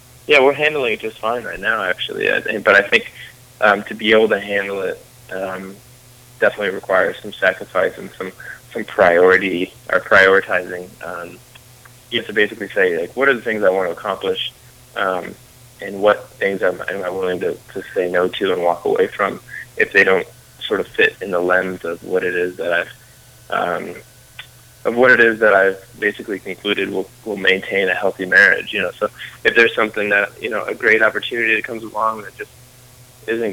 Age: 20-39